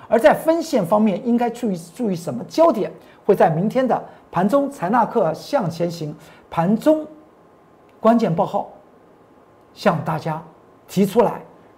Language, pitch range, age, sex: Chinese, 170-275 Hz, 50-69, male